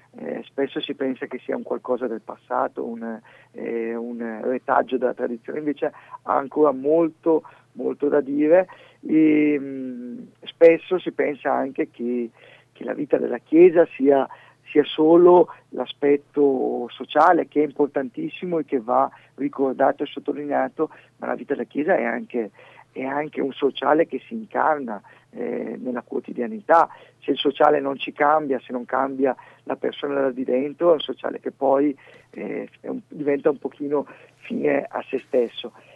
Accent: native